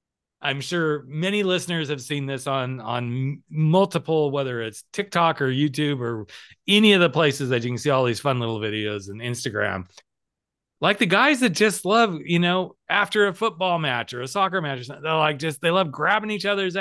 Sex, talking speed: male, 205 wpm